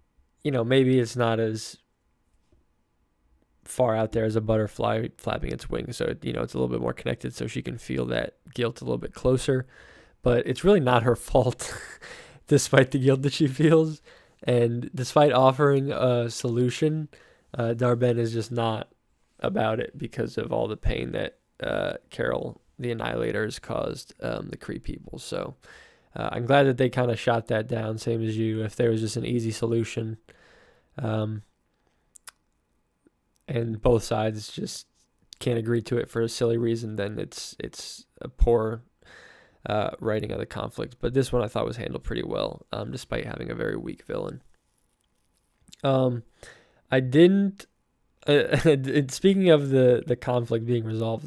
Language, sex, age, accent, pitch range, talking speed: English, male, 10-29, American, 110-130 Hz, 170 wpm